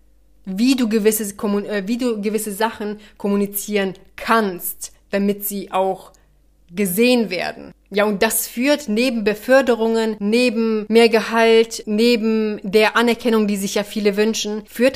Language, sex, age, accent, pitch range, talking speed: German, female, 30-49, German, 205-240 Hz, 120 wpm